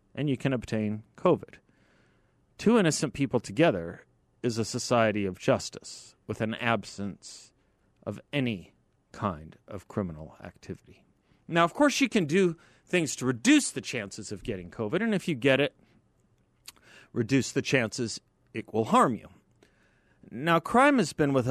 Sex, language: male, English